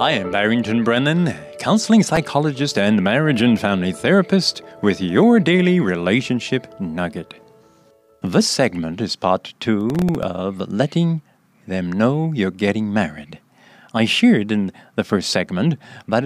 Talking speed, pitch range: 130 wpm, 105-175 Hz